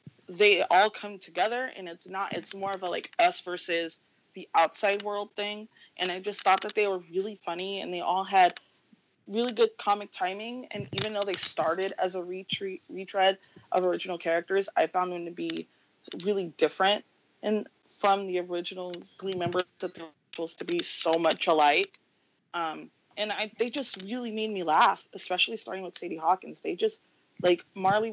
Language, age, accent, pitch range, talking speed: English, 30-49, American, 170-200 Hz, 185 wpm